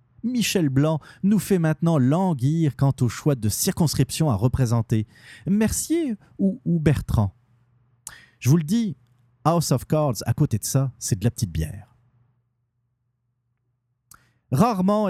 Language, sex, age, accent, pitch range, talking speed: French, male, 40-59, French, 120-165 Hz, 135 wpm